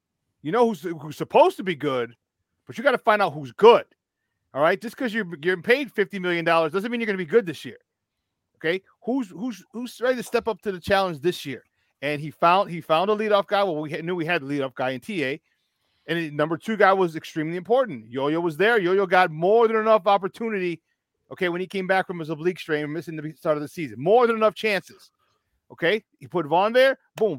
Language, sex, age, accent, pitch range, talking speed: English, male, 40-59, American, 150-200 Hz, 235 wpm